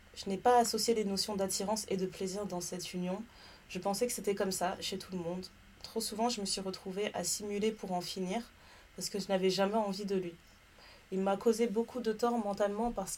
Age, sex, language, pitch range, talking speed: 20-39, female, French, 185-215 Hz, 230 wpm